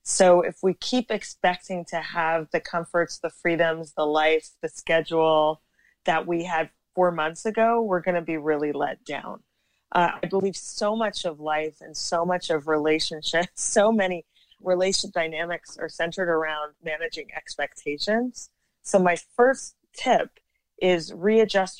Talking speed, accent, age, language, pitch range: 150 wpm, American, 30-49, English, 155-185 Hz